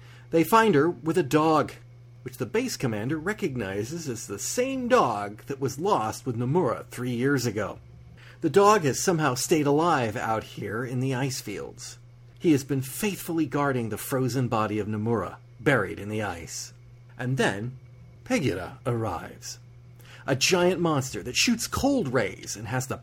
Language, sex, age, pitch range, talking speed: English, male, 40-59, 120-165 Hz, 165 wpm